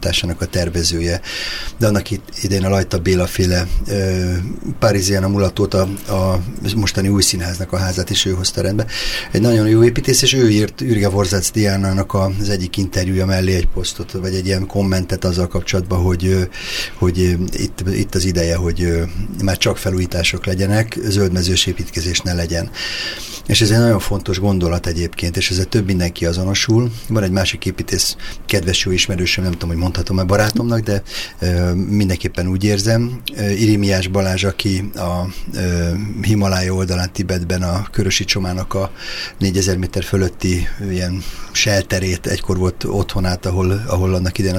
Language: Hungarian